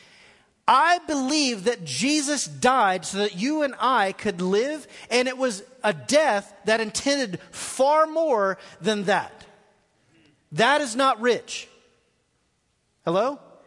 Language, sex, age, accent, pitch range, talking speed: English, male, 40-59, American, 175-250 Hz, 125 wpm